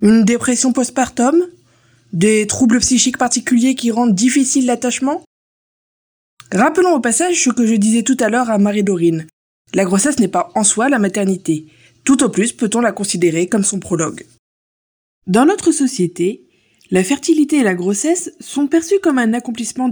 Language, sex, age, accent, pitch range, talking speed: French, female, 20-39, French, 190-275 Hz, 160 wpm